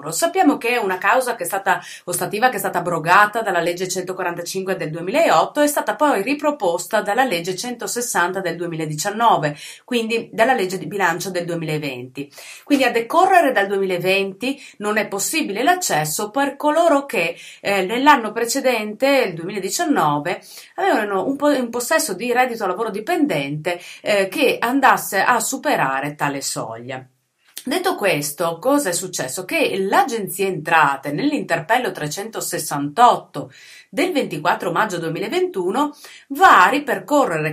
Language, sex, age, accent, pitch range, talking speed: Italian, female, 30-49, native, 170-265 Hz, 130 wpm